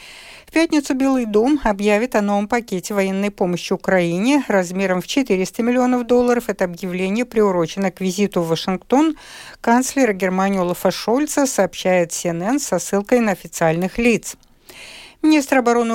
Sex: female